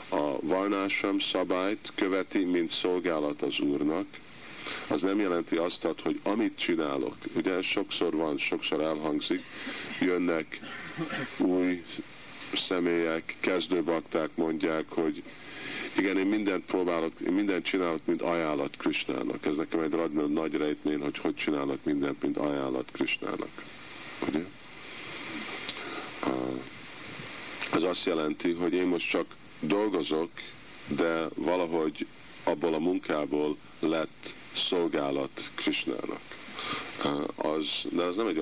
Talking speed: 110 wpm